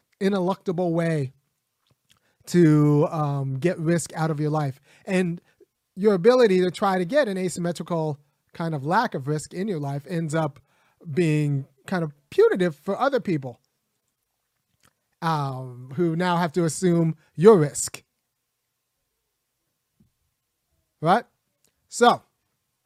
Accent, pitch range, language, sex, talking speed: American, 145-185 Hz, English, male, 120 wpm